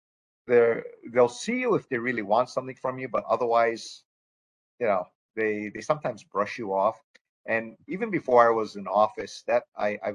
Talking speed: 175 wpm